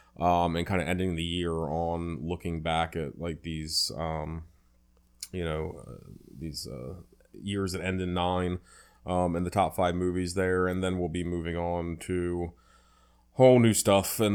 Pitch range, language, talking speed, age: 85-95 Hz, English, 175 wpm, 20-39